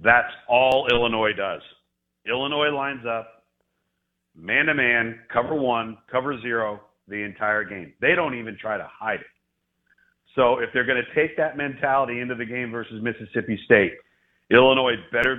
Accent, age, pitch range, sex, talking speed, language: American, 40-59, 105-125 Hz, male, 150 wpm, English